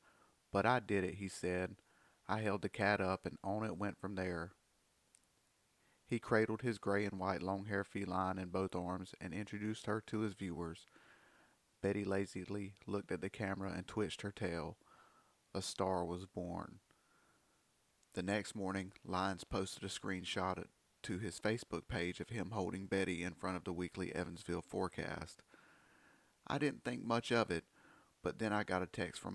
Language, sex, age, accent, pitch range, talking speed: English, male, 30-49, American, 90-105 Hz, 170 wpm